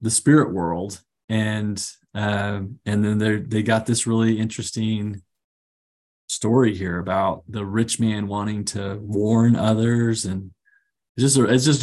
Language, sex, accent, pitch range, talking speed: English, male, American, 105-120 Hz, 135 wpm